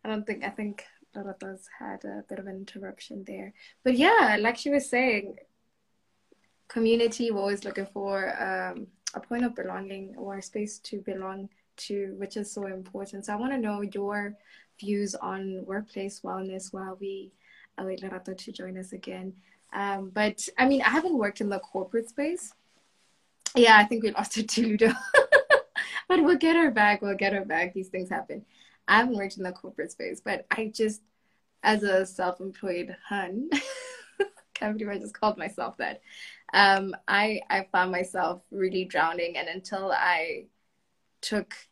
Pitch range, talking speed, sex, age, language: 190-220 Hz, 175 wpm, female, 10-29, English